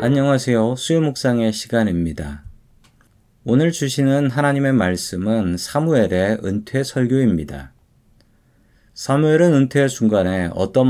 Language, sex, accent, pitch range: Korean, male, native, 100-135 Hz